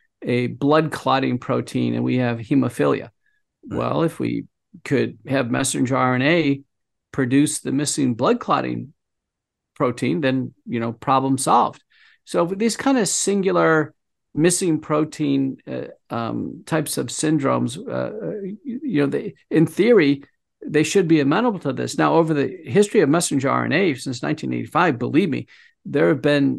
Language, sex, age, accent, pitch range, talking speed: English, male, 50-69, American, 130-165 Hz, 145 wpm